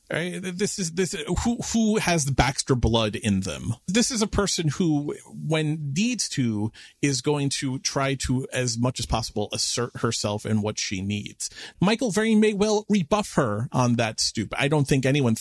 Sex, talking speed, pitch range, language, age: male, 185 wpm, 105-155 Hz, English, 40-59